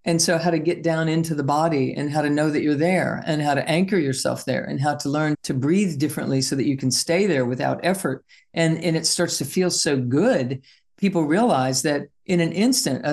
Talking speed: 235 wpm